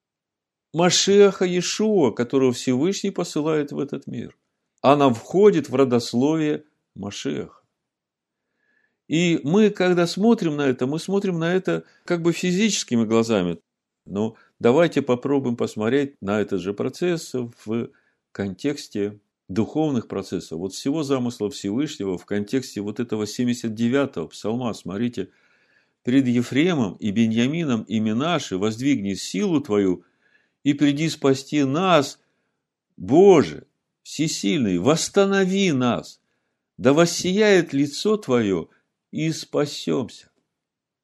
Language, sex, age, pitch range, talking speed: Russian, male, 50-69, 110-155 Hz, 105 wpm